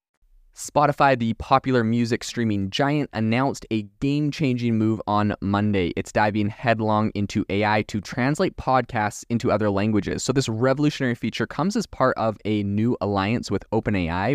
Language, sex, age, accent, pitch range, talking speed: English, male, 20-39, American, 100-125 Hz, 150 wpm